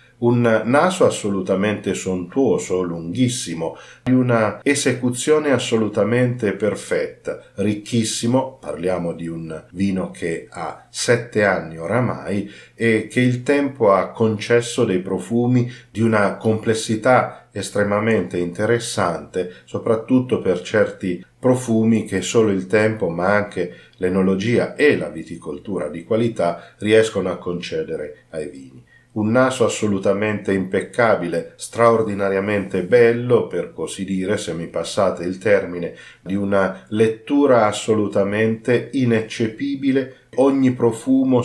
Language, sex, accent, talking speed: Italian, male, native, 110 wpm